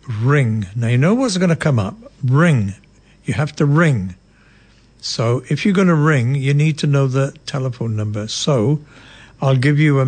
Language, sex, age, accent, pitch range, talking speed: English, male, 60-79, British, 115-145 Hz, 190 wpm